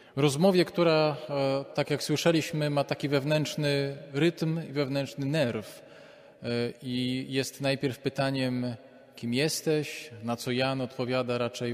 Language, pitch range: Polish, 120-145 Hz